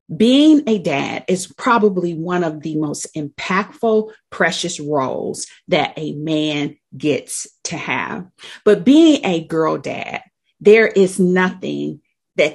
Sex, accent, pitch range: female, American, 150-195 Hz